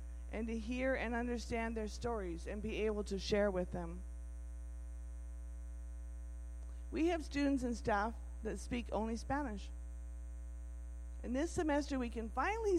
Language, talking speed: English, 135 wpm